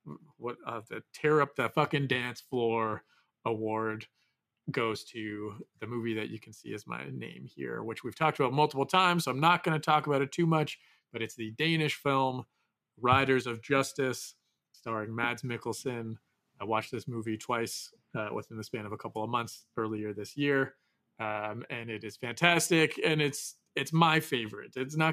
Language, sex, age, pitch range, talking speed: English, male, 30-49, 115-150 Hz, 185 wpm